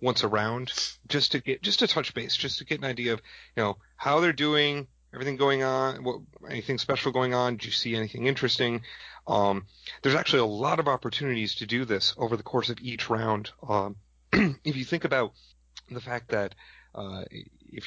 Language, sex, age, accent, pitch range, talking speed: English, male, 30-49, American, 110-140 Hz, 200 wpm